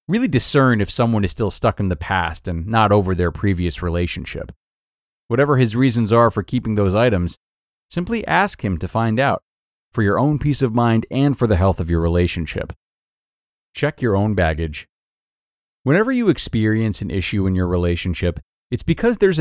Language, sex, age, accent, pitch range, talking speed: English, male, 30-49, American, 95-125 Hz, 180 wpm